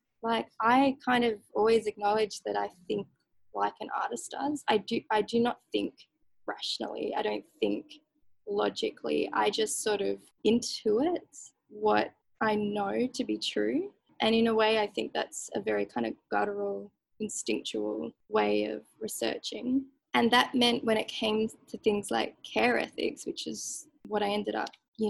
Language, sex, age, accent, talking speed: English, female, 10-29, Australian, 165 wpm